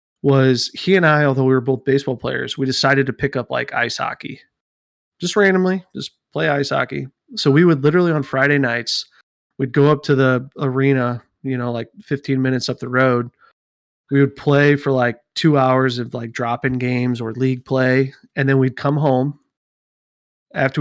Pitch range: 130-145 Hz